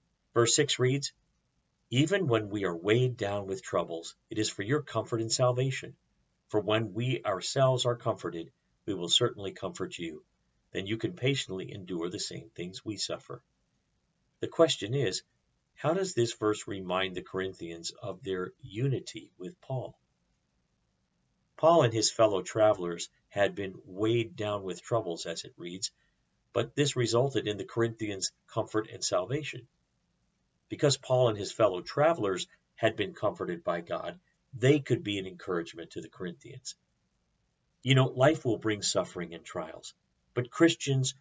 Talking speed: 155 wpm